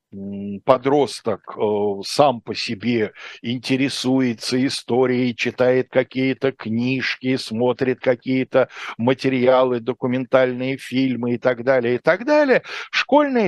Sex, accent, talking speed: male, native, 100 wpm